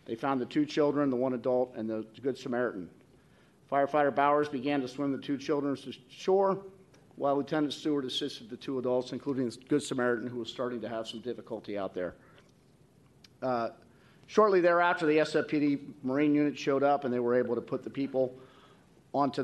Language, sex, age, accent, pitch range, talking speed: English, male, 50-69, American, 125-150 Hz, 185 wpm